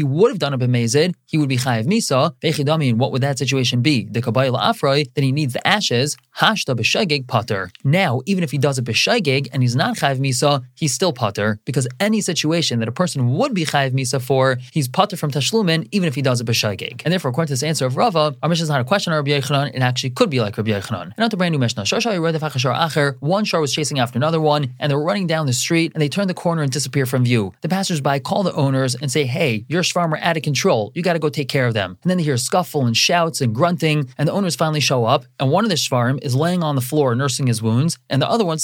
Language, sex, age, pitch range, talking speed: English, male, 20-39, 130-170 Hz, 260 wpm